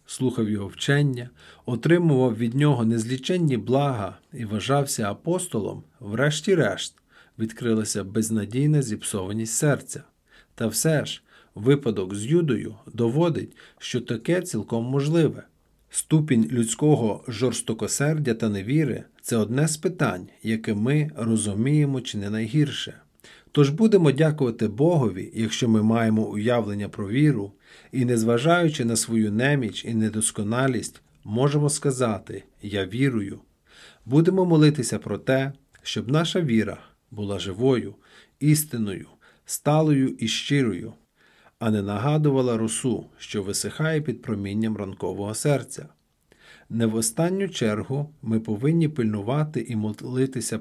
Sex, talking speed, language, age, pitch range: male, 115 wpm, Ukrainian, 40-59, 110-145 Hz